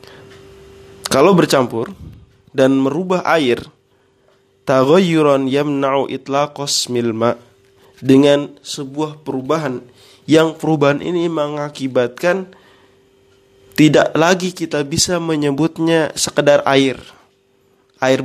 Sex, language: male, Indonesian